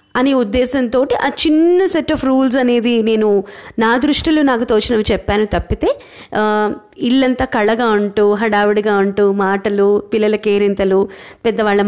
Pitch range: 205-270 Hz